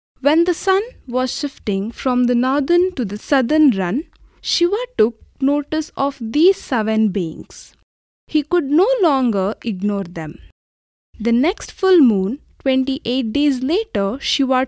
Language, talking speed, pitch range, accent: Kannada, 135 wpm, 215-300 Hz, native